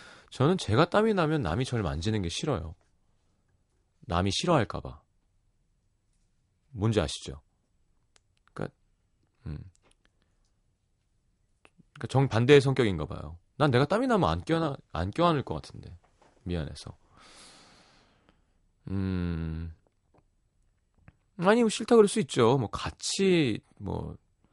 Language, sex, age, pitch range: Korean, male, 30-49, 90-145 Hz